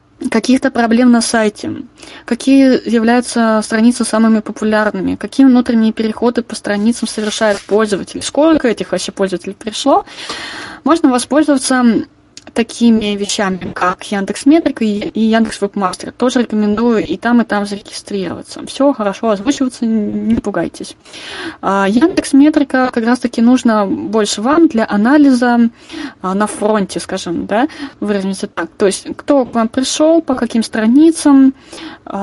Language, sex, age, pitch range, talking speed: Russian, female, 20-39, 210-275 Hz, 125 wpm